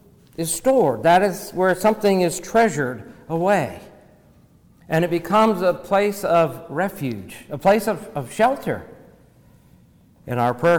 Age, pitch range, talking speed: 60-79, 135-170 Hz, 135 wpm